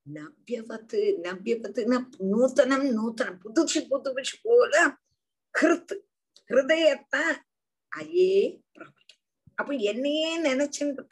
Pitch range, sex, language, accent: 215-295 Hz, female, Tamil, native